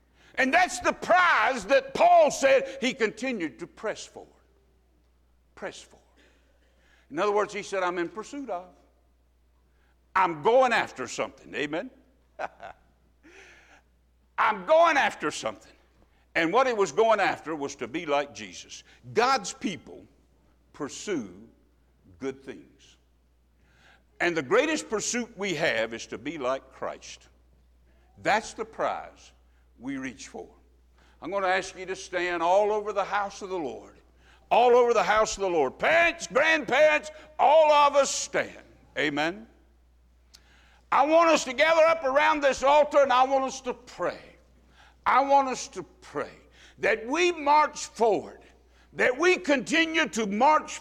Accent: American